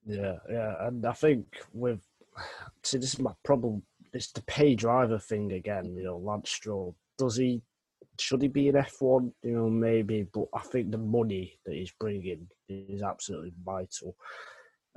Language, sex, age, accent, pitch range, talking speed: English, male, 20-39, British, 100-115 Hz, 170 wpm